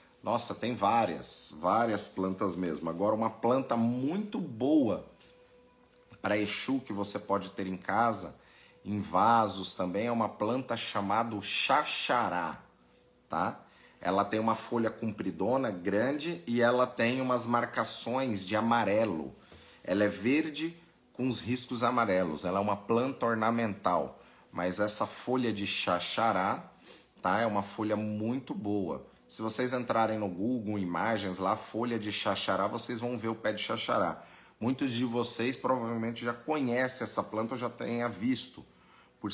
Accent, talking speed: Brazilian, 145 wpm